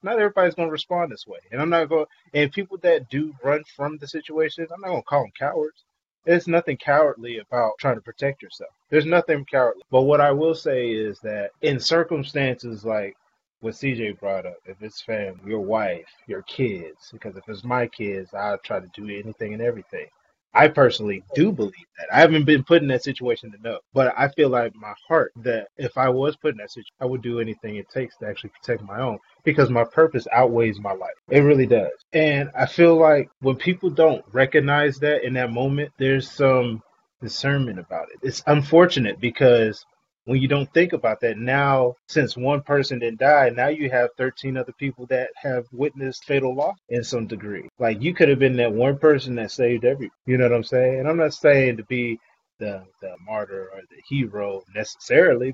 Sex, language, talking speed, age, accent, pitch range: male, English, 210 wpm, 20-39, American, 120-160 Hz